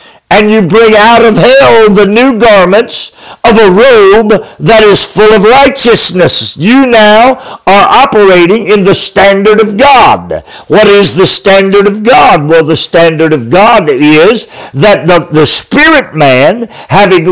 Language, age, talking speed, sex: English, 50-69, 150 wpm, male